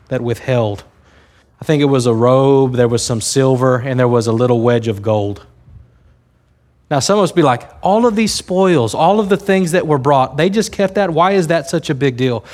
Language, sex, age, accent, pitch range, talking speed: English, male, 30-49, American, 120-155 Hz, 230 wpm